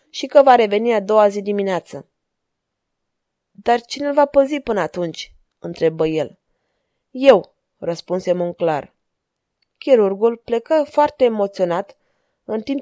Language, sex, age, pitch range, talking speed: Romanian, female, 20-39, 205-265 Hz, 120 wpm